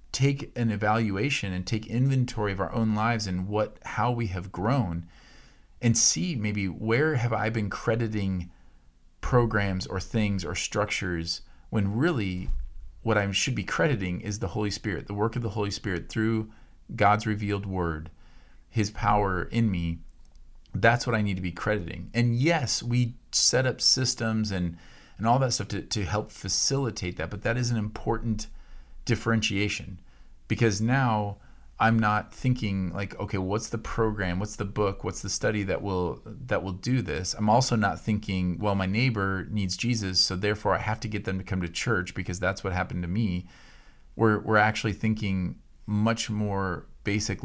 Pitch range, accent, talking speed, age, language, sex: 95-115 Hz, American, 175 wpm, 40-59, English, male